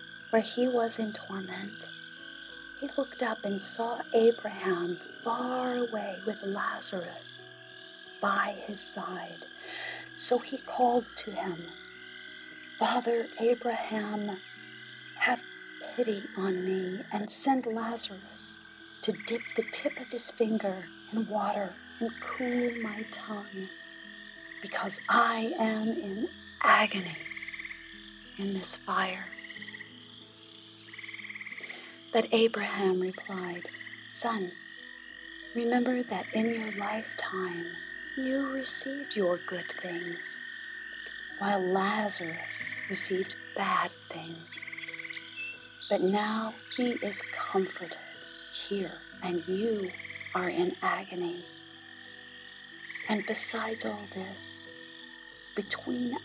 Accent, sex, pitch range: American, female, 205-330 Hz